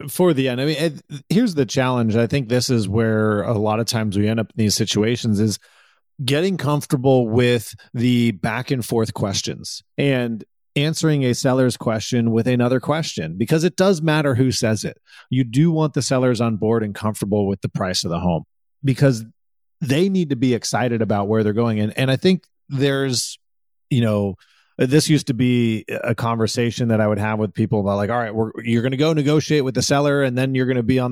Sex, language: male, English